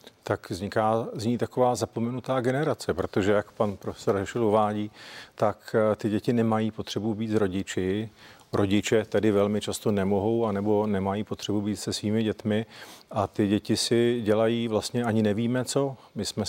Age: 40-59